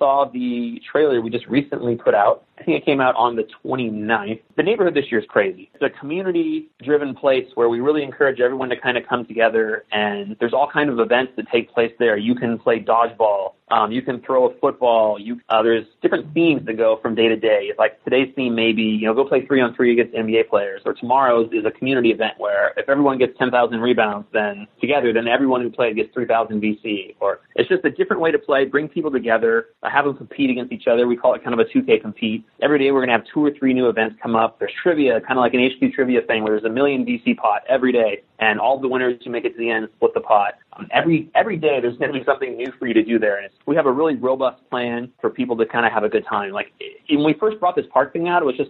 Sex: male